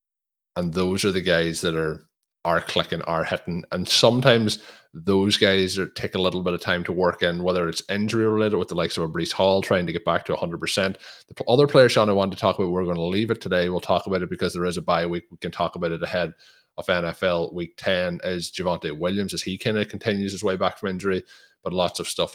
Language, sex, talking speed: English, male, 250 wpm